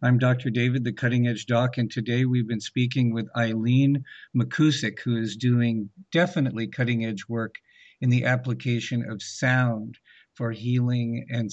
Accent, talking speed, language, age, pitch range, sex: American, 155 wpm, English, 50-69, 100-125 Hz, male